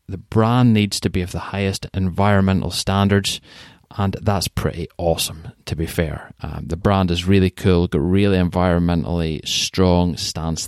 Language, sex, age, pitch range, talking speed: English, male, 30-49, 95-120 Hz, 155 wpm